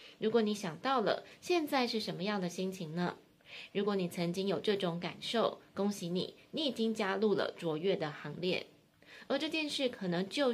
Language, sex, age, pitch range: Chinese, female, 20-39, 175-220 Hz